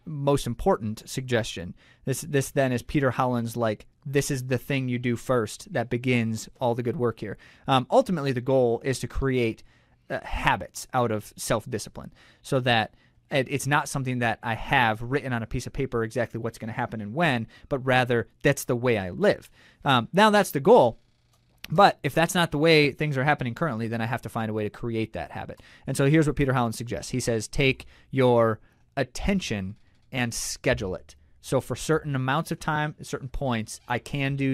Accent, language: American, English